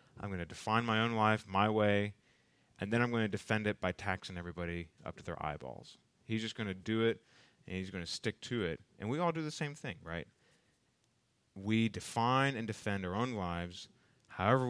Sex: male